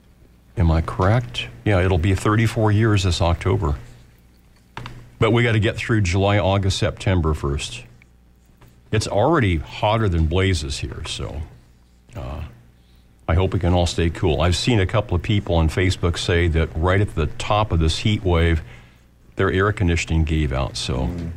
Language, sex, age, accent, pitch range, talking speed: English, male, 50-69, American, 80-115 Hz, 165 wpm